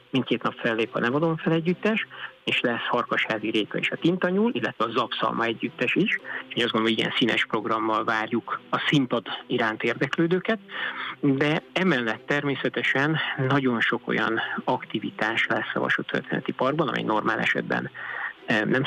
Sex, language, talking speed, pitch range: male, Hungarian, 150 wpm, 115-160 Hz